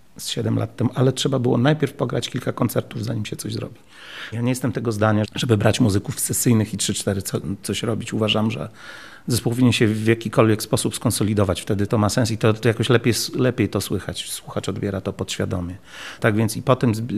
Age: 40-59